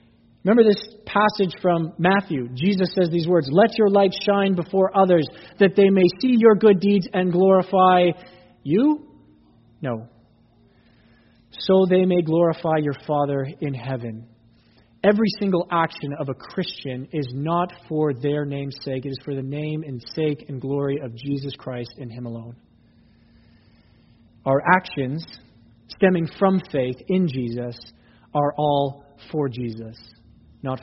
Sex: male